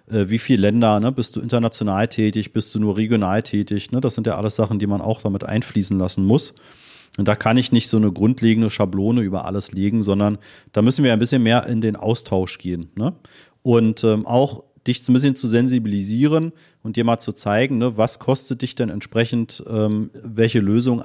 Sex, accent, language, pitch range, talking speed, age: male, German, German, 105-130 Hz, 195 wpm, 40-59